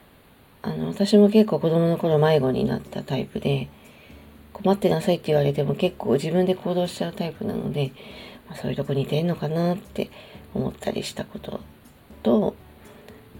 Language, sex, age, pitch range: Japanese, female, 40-59, 140-195 Hz